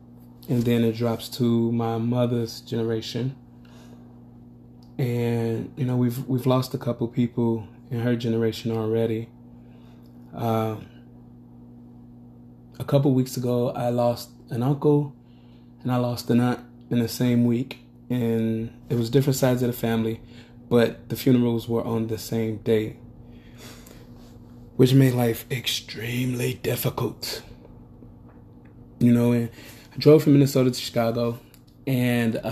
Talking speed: 130 wpm